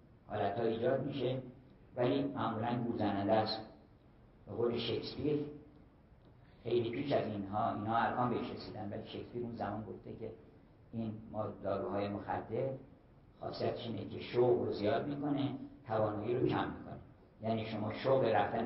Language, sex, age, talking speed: Persian, male, 50-69, 130 wpm